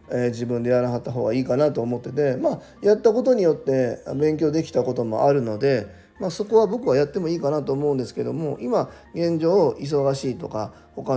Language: Japanese